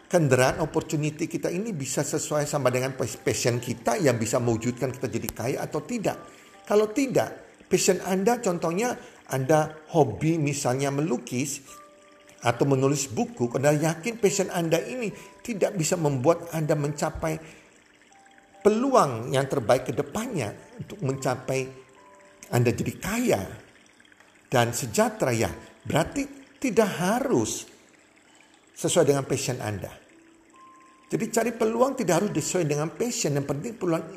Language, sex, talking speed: Indonesian, male, 125 wpm